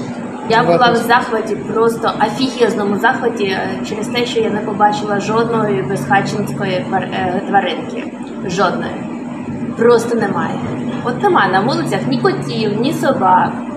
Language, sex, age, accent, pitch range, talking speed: Ukrainian, female, 20-39, native, 215-260 Hz, 120 wpm